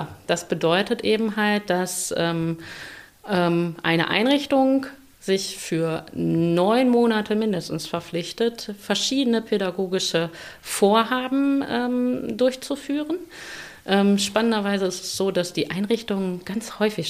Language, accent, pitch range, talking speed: German, German, 165-220 Hz, 105 wpm